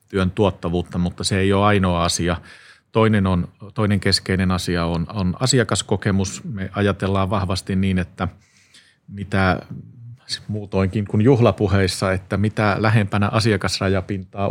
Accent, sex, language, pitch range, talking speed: native, male, Finnish, 90-105 Hz, 120 wpm